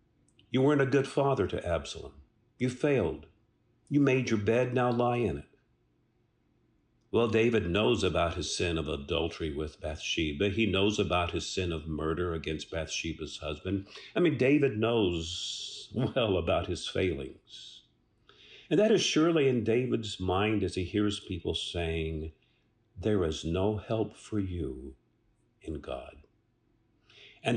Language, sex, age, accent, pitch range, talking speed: English, male, 50-69, American, 85-125 Hz, 145 wpm